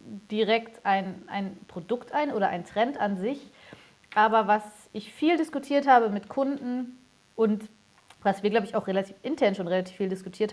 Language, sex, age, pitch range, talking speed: German, female, 30-49, 205-250 Hz, 170 wpm